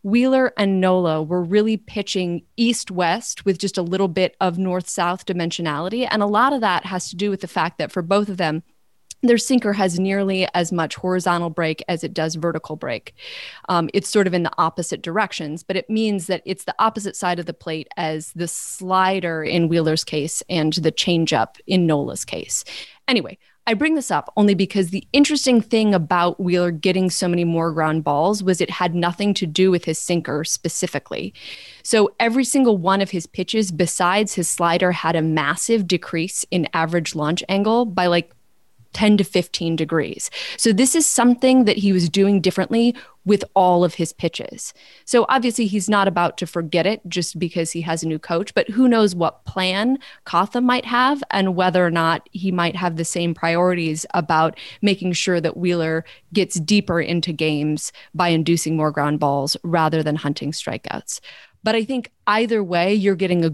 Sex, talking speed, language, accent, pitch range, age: female, 190 wpm, English, American, 165-205 Hz, 20-39